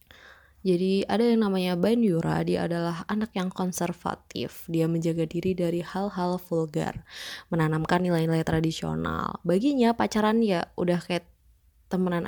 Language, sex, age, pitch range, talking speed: Indonesian, female, 20-39, 165-200 Hz, 125 wpm